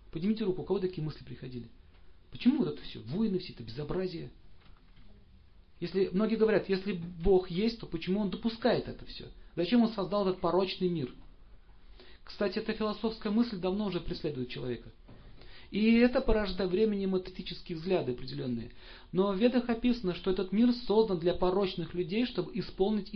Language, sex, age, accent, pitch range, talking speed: Russian, male, 40-59, native, 125-205 Hz, 160 wpm